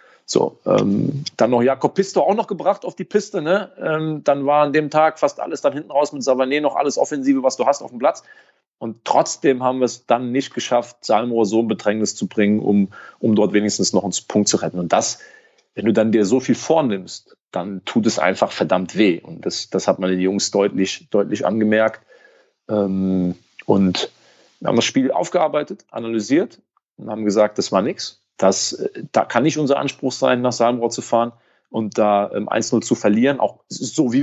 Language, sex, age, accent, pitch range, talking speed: German, male, 30-49, German, 110-150 Hz, 205 wpm